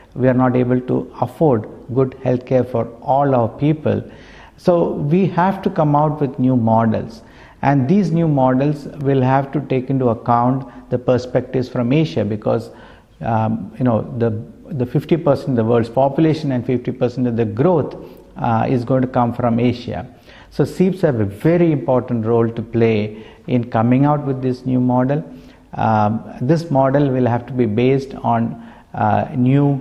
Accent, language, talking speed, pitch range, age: Indian, English, 175 wpm, 115-140 Hz, 50-69